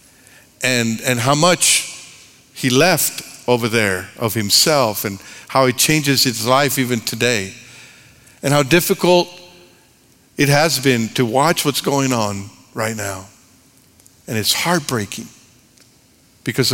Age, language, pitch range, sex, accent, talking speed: 60-79, English, 115-135 Hz, male, American, 125 wpm